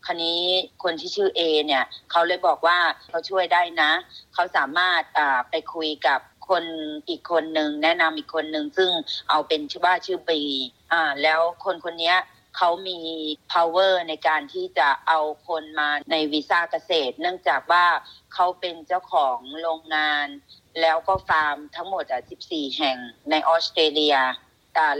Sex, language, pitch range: female, Thai, 150-175 Hz